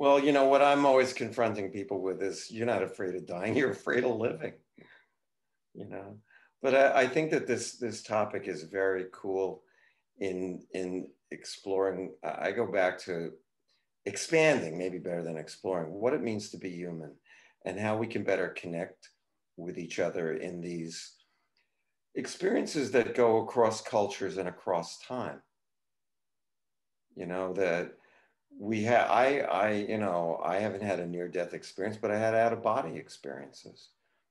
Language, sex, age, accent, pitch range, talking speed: English, male, 50-69, American, 90-115 Hz, 155 wpm